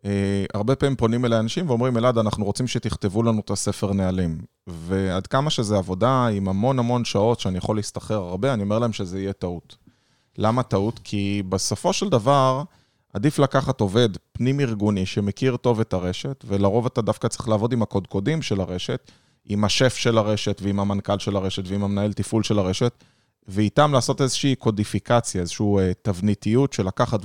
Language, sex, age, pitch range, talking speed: Hebrew, male, 20-39, 100-135 Hz, 170 wpm